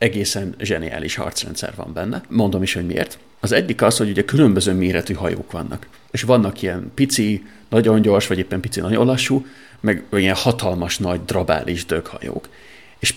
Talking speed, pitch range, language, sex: 165 wpm, 90-115 Hz, Hungarian, male